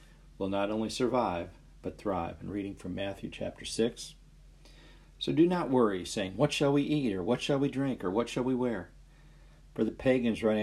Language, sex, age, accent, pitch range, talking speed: English, male, 50-69, American, 85-120 Hz, 200 wpm